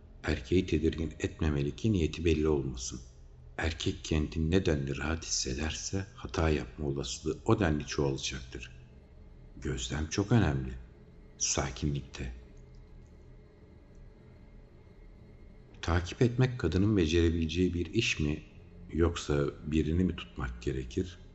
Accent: native